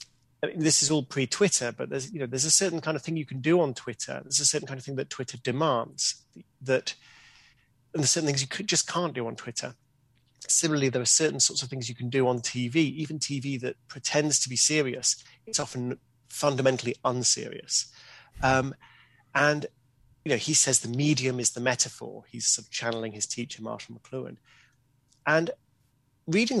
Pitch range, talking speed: 120-150 Hz, 195 wpm